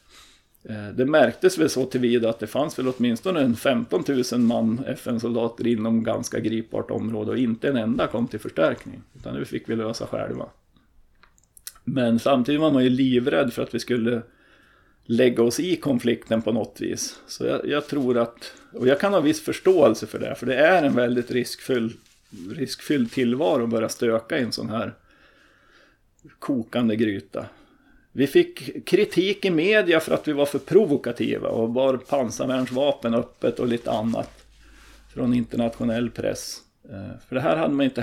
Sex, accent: male, native